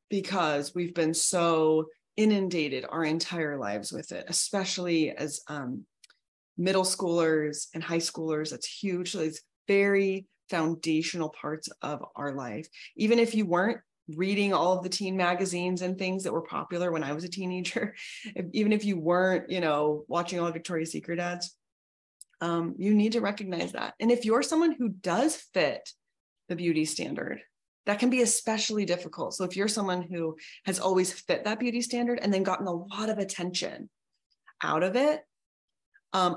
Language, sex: English, female